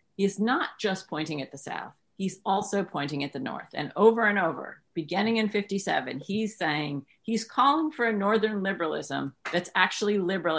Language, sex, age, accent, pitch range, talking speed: English, female, 40-59, American, 170-235 Hz, 175 wpm